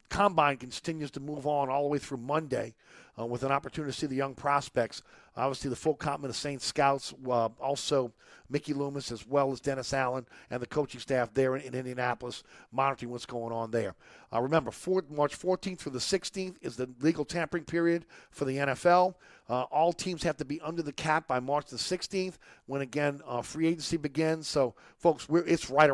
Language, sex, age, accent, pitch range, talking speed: English, male, 50-69, American, 130-160 Hz, 200 wpm